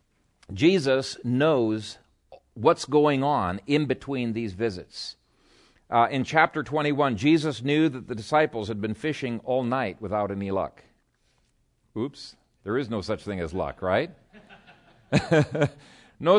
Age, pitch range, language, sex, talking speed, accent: 50-69, 125-190 Hz, English, male, 130 wpm, American